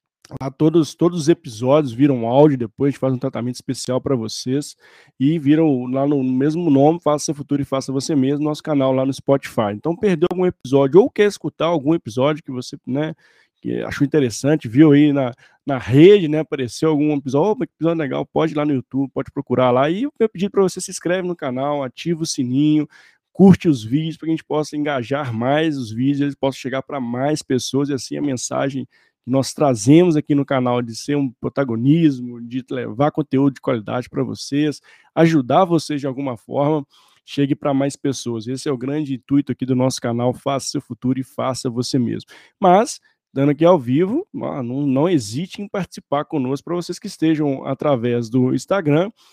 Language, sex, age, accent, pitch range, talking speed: Portuguese, male, 20-39, Brazilian, 130-155 Hz, 195 wpm